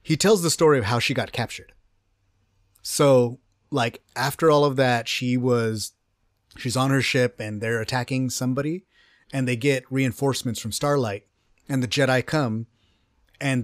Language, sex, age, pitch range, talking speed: English, male, 30-49, 110-140 Hz, 160 wpm